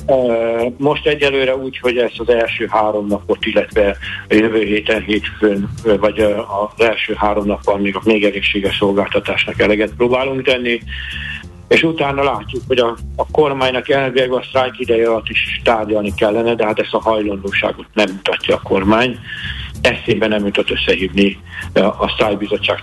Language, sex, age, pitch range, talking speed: Hungarian, male, 60-79, 100-120 Hz, 150 wpm